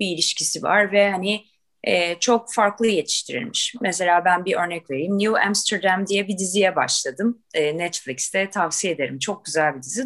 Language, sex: Turkish, female